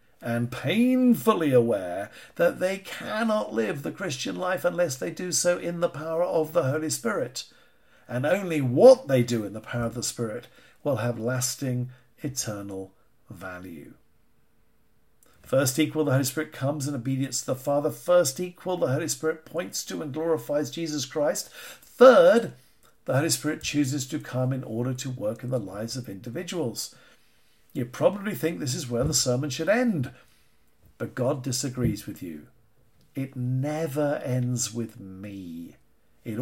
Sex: male